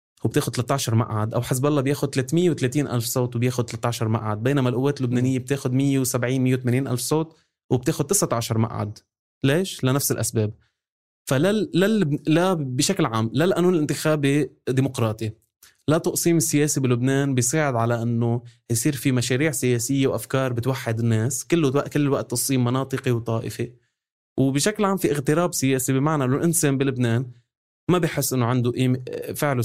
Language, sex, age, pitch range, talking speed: Arabic, male, 20-39, 115-140 Hz, 140 wpm